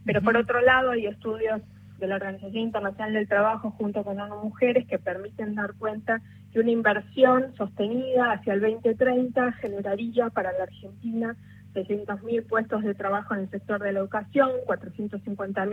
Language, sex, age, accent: Spanish, female, 20-39, Argentinian